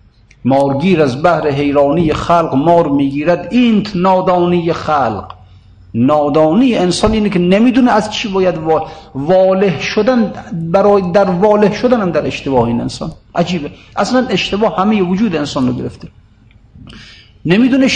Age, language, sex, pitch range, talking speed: 50-69, Persian, male, 135-200 Hz, 125 wpm